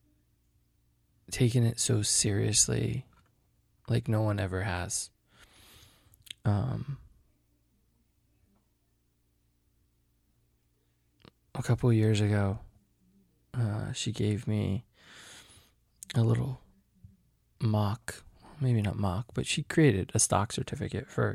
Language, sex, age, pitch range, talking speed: English, male, 20-39, 100-120 Hz, 85 wpm